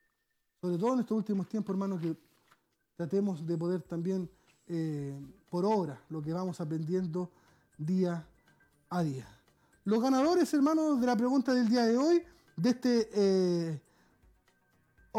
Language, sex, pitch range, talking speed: French, male, 180-240 Hz, 140 wpm